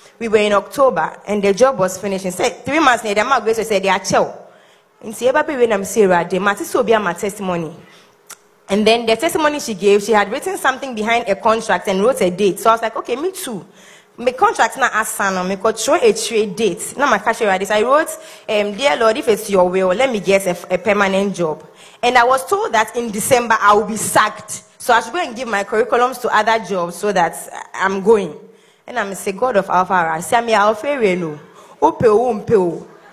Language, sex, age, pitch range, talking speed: English, female, 20-39, 195-255 Hz, 180 wpm